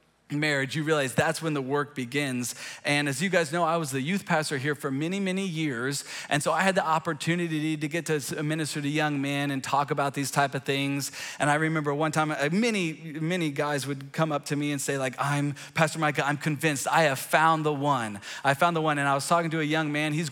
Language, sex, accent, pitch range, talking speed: English, male, American, 145-170 Hz, 240 wpm